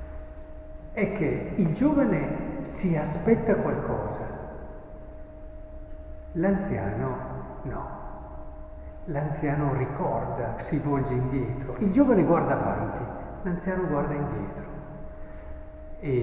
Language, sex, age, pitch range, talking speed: Italian, male, 50-69, 125-180 Hz, 80 wpm